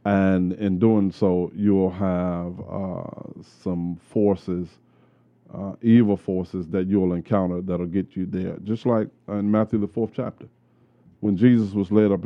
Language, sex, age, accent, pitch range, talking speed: English, male, 40-59, American, 95-115 Hz, 150 wpm